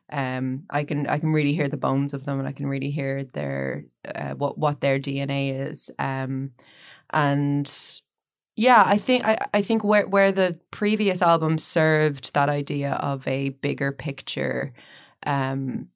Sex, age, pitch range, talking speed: female, 20-39, 135-155 Hz, 165 wpm